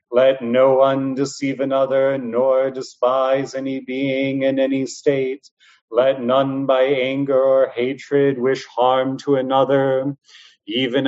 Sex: male